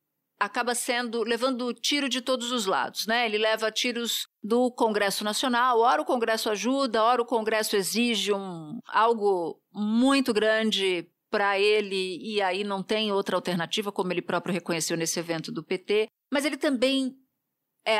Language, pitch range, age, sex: Portuguese, 185-235 Hz, 50-69, female